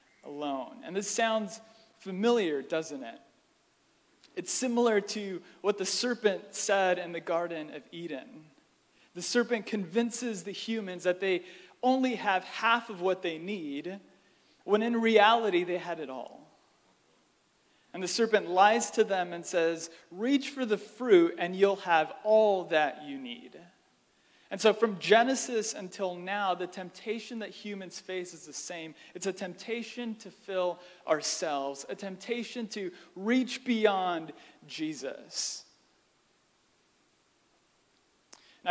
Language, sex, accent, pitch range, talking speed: English, male, American, 175-225 Hz, 135 wpm